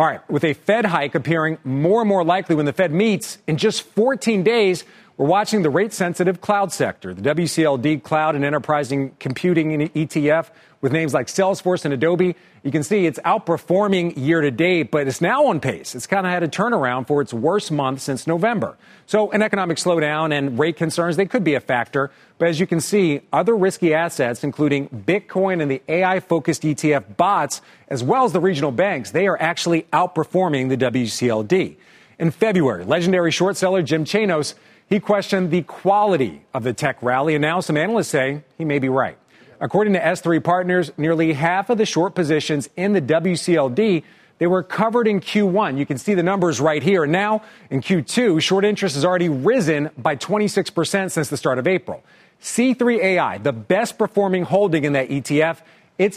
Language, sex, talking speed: English, male, 185 wpm